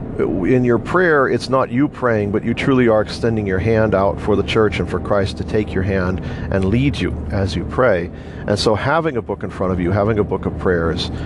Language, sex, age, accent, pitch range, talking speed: English, male, 50-69, American, 90-110 Hz, 240 wpm